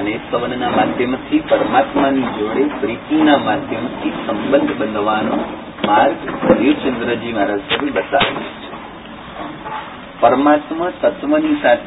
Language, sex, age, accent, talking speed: Gujarati, male, 40-59, native, 65 wpm